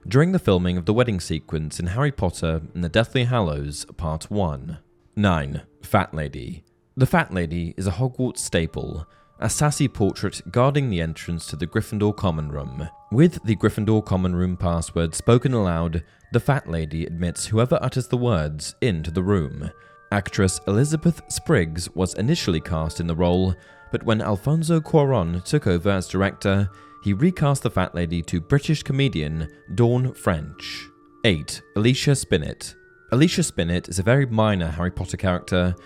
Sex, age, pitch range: male, 20-39, 85-125 Hz